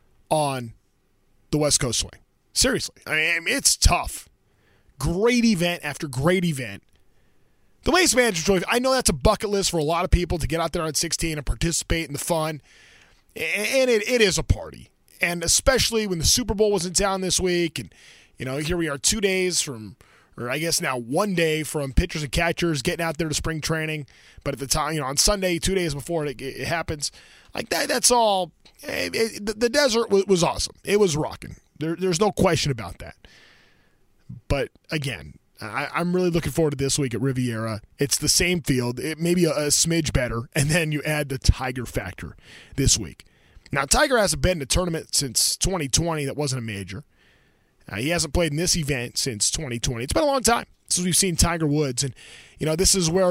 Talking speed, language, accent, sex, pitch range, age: 205 wpm, English, American, male, 135-180 Hz, 20-39